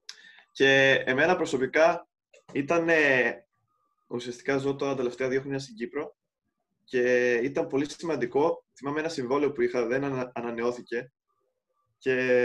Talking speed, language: 120 wpm, Greek